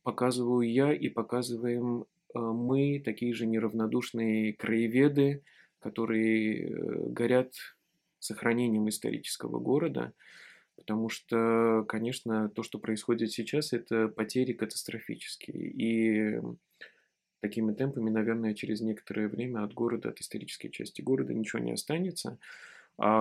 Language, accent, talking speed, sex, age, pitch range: Russian, native, 105 wpm, male, 20-39, 110-125 Hz